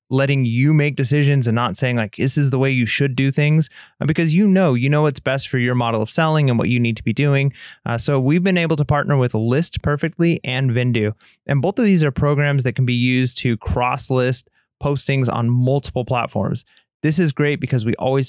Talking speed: 230 wpm